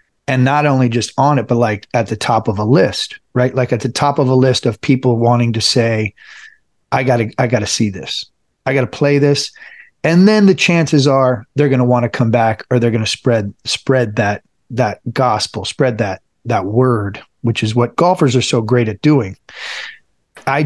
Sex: male